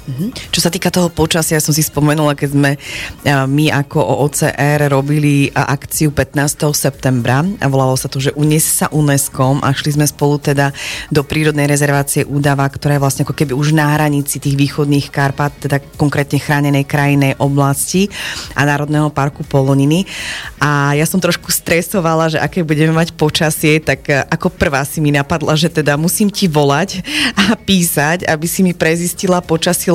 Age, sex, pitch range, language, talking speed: 30-49, female, 145-170 Hz, Slovak, 165 wpm